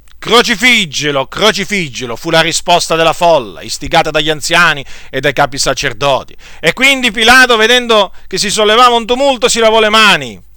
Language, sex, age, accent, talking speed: Italian, male, 40-59, native, 155 wpm